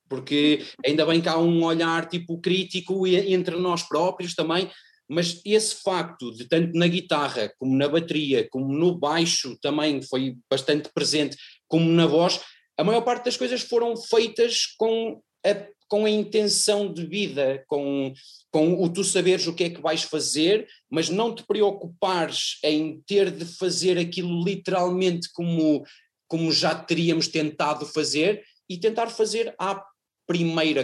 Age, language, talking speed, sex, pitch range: 30-49, Portuguese, 150 wpm, male, 155-200 Hz